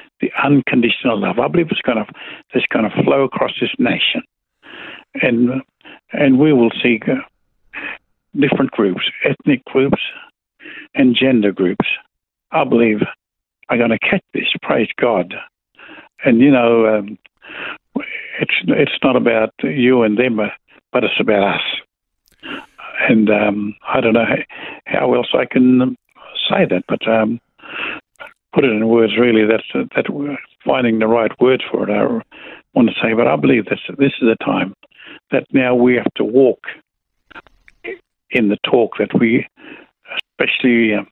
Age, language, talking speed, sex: 60-79, English, 155 wpm, male